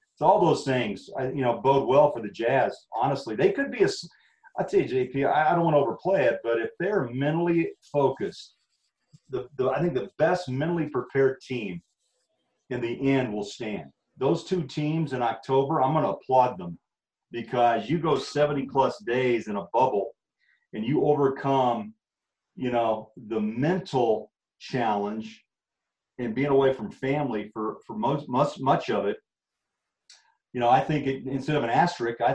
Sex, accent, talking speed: male, American, 170 wpm